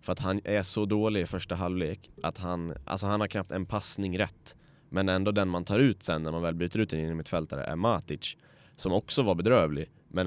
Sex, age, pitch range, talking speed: male, 20-39, 85-105 Hz, 245 wpm